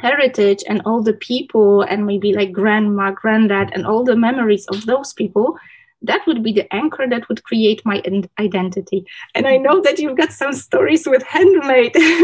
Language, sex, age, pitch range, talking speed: Polish, female, 20-39, 210-265 Hz, 180 wpm